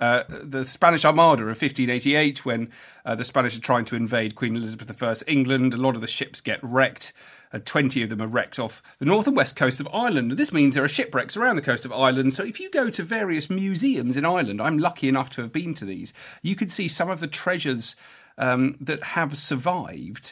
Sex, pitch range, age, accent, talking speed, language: male, 125-155 Hz, 40-59, British, 225 wpm, English